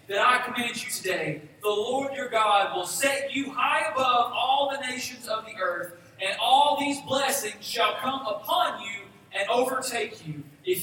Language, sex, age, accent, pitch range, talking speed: English, male, 30-49, American, 180-285 Hz, 175 wpm